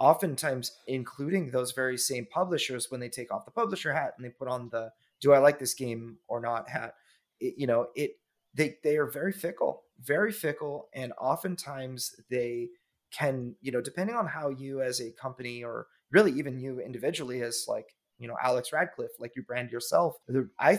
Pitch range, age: 125-155 Hz, 30-49